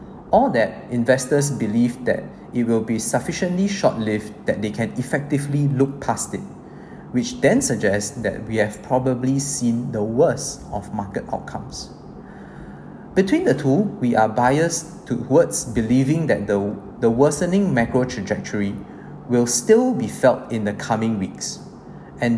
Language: English